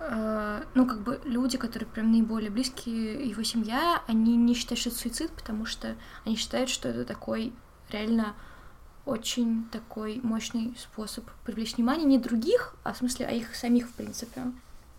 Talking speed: 160 wpm